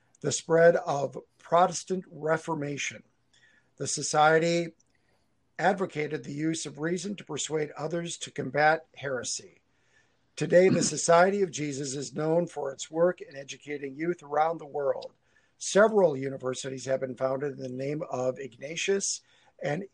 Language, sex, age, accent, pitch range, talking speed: English, male, 50-69, American, 140-170 Hz, 135 wpm